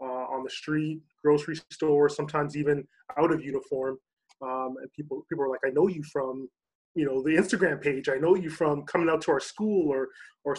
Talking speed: 210 wpm